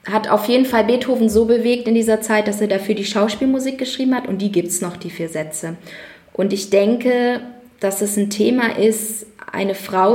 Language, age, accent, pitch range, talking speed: German, 20-39, German, 195-220 Hz, 205 wpm